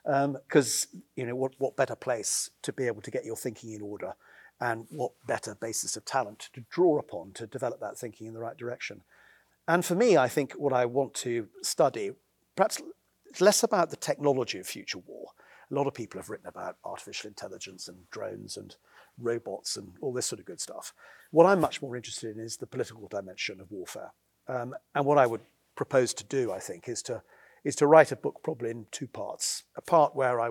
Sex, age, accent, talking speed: male, 40-59, British, 215 wpm